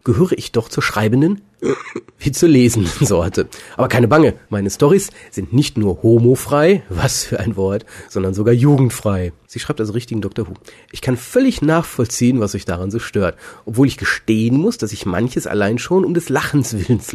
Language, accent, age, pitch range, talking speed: German, German, 40-59, 105-145 Hz, 185 wpm